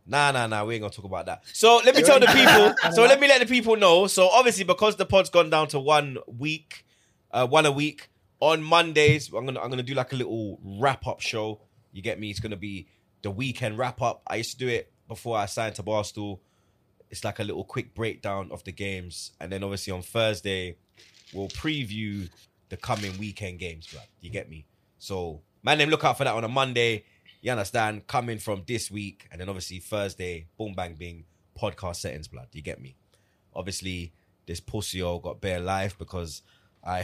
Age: 20-39